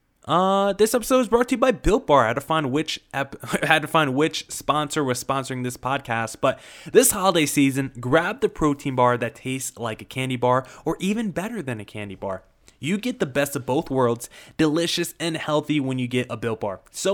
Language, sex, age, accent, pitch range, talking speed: English, male, 20-39, American, 125-165 Hz, 220 wpm